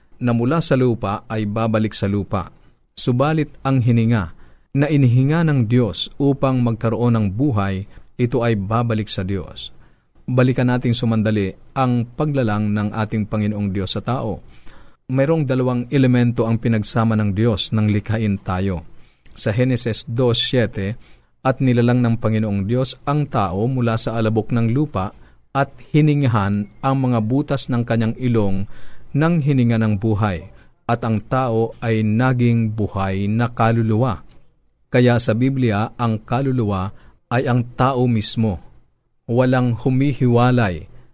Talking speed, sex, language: 135 wpm, male, Filipino